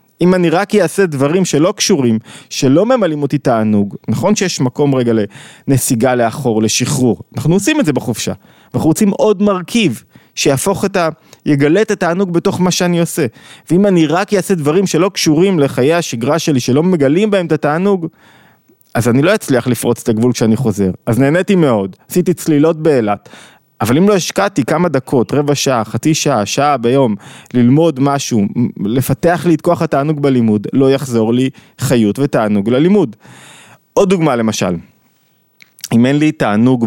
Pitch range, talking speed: 125-175 Hz, 165 wpm